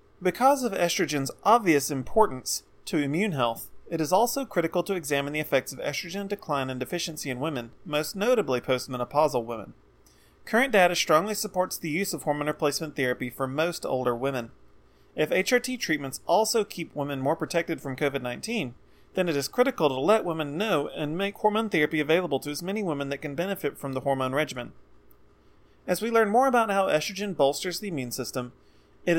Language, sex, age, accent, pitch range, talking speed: English, male, 30-49, American, 135-195 Hz, 180 wpm